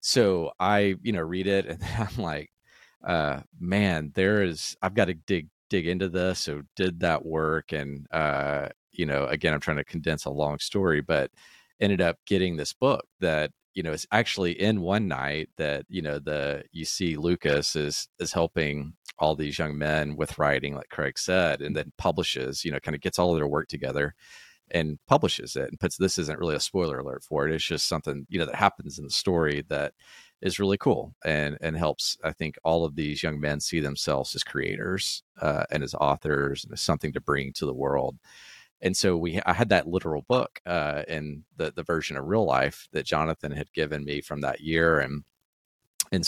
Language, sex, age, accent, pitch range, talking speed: English, male, 30-49, American, 75-90 Hz, 205 wpm